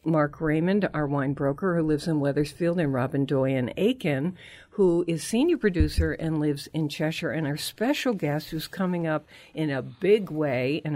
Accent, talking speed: American, 180 wpm